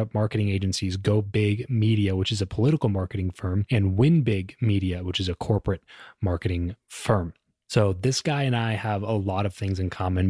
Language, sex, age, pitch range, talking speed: English, male, 20-39, 100-120 Hz, 190 wpm